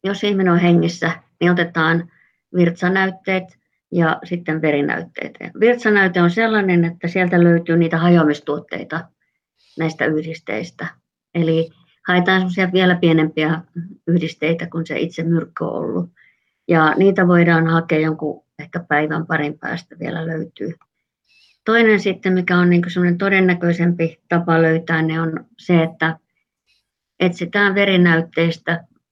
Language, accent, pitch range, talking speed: Finnish, native, 160-180 Hz, 115 wpm